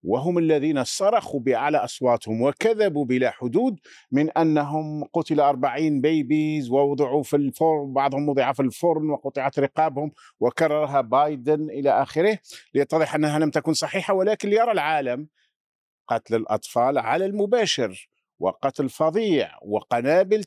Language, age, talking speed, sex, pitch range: Arabic, 50-69, 120 wpm, male, 130-155 Hz